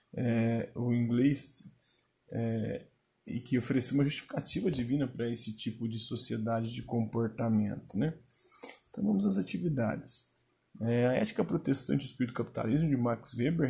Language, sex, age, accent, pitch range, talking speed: Portuguese, male, 20-39, Brazilian, 115-140 Hz, 145 wpm